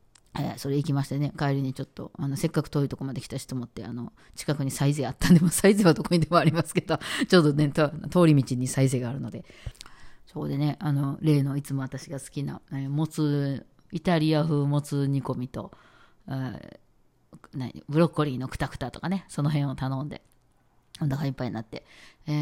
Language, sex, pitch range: Japanese, female, 135-165 Hz